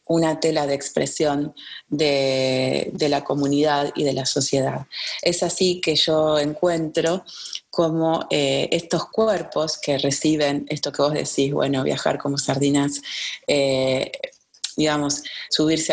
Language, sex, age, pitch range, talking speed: Spanish, female, 30-49, 145-165 Hz, 125 wpm